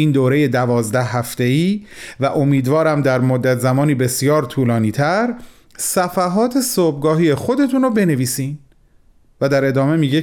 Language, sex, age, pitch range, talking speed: Persian, male, 30-49, 135-210 Hz, 130 wpm